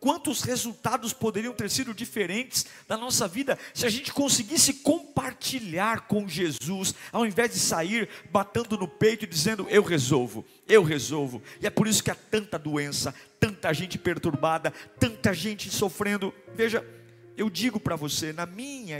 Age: 50-69